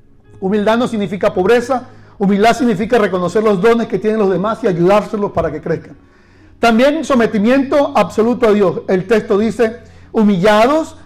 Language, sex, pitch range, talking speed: Spanish, male, 170-240 Hz, 145 wpm